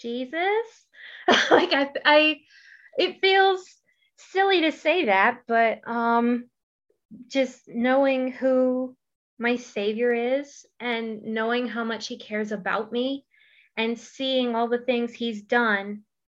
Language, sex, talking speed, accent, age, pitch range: English, female, 120 wpm, American, 20-39, 210-245 Hz